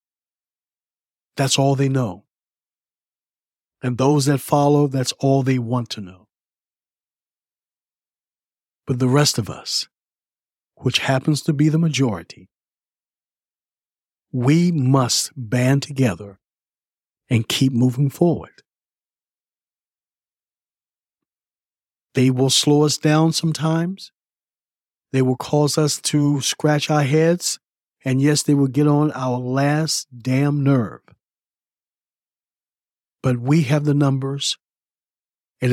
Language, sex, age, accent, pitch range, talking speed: English, male, 50-69, American, 130-150 Hz, 105 wpm